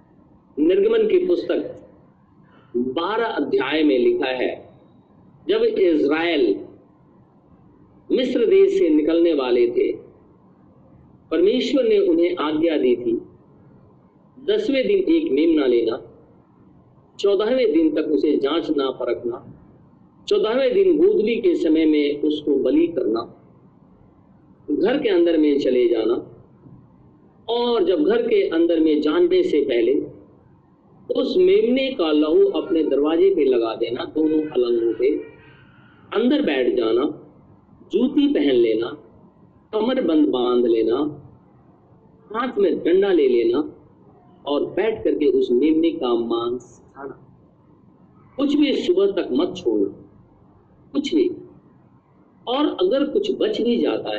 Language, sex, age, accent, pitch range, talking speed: Hindi, male, 50-69, native, 280-390 Hz, 120 wpm